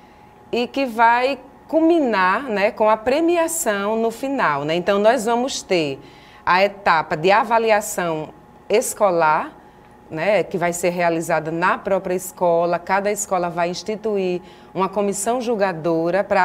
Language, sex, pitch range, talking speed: Portuguese, female, 180-230 Hz, 130 wpm